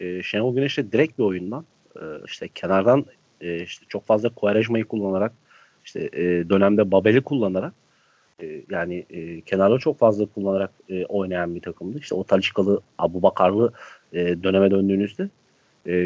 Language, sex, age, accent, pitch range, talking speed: Turkish, male, 40-59, native, 95-120 Hz, 145 wpm